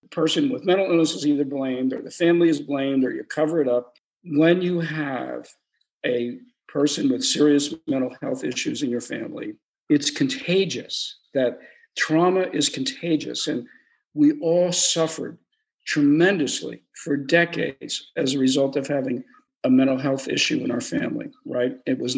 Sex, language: male, English